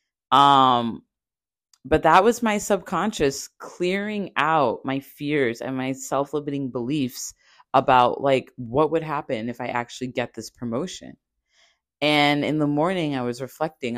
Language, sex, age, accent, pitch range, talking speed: English, female, 30-49, American, 130-175 Hz, 135 wpm